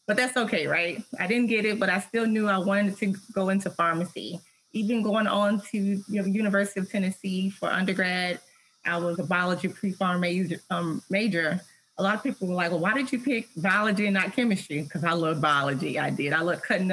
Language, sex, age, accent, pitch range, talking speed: English, female, 30-49, American, 180-210 Hz, 210 wpm